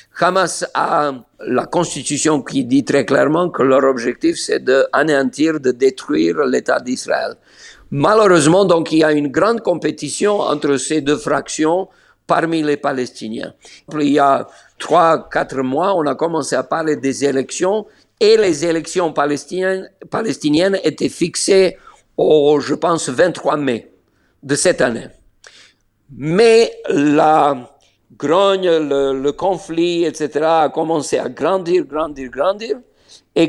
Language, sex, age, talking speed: French, male, 50-69, 135 wpm